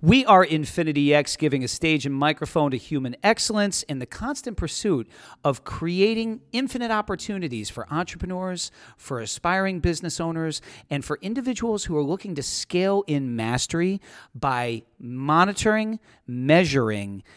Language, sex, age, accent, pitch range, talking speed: English, male, 40-59, American, 120-165 Hz, 135 wpm